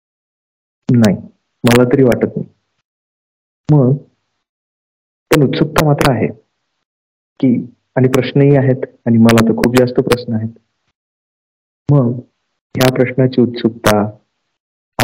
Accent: native